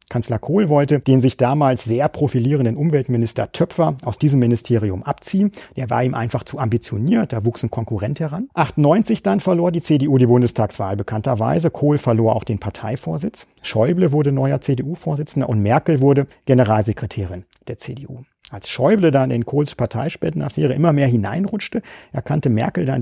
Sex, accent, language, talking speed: male, German, German, 155 wpm